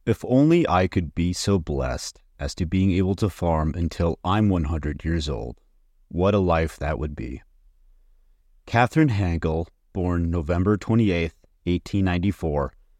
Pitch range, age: 80-100 Hz, 30-49